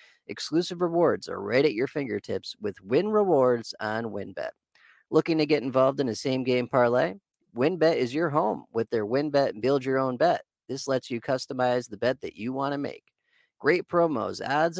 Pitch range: 115-145 Hz